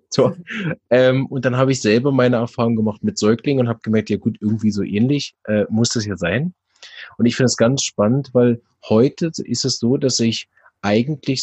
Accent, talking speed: German, 205 wpm